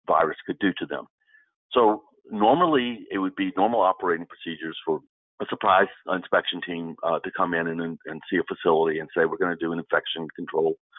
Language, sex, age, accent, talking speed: English, male, 50-69, American, 195 wpm